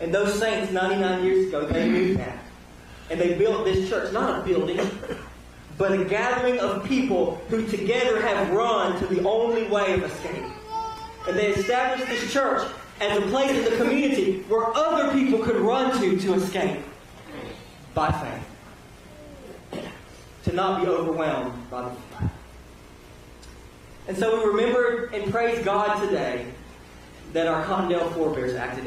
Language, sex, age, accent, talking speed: English, male, 30-49, American, 150 wpm